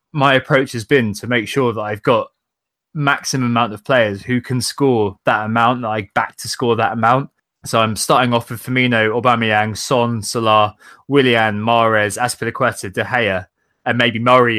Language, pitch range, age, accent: English, 110-130 Hz, 20-39, British